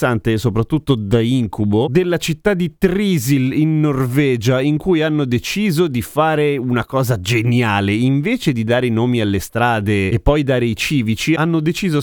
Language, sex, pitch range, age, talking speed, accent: Italian, male, 110-145 Hz, 30-49, 165 wpm, native